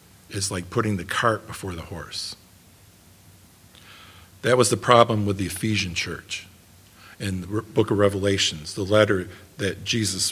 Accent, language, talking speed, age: American, English, 145 wpm, 50-69